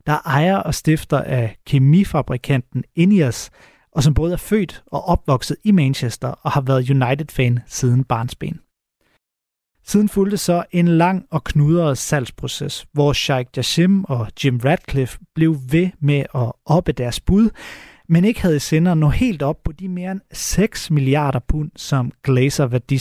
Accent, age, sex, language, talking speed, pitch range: native, 30-49, male, Danish, 155 wpm, 130-175 Hz